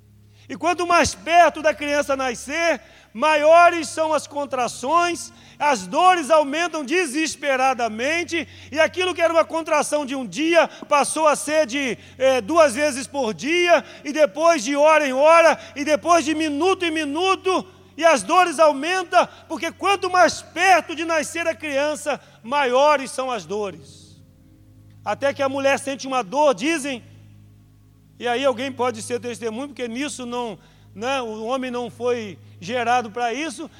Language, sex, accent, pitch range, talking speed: Portuguese, male, Brazilian, 240-315 Hz, 155 wpm